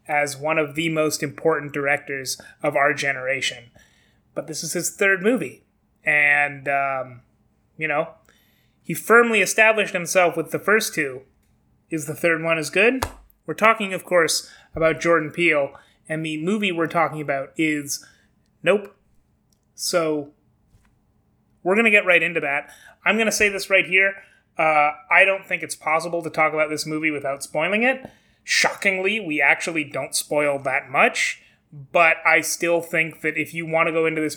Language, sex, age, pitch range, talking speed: English, male, 30-49, 145-175 Hz, 170 wpm